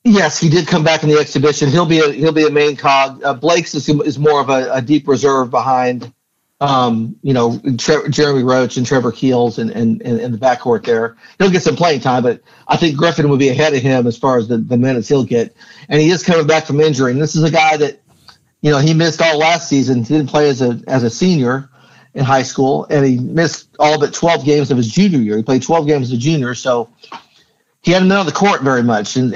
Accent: American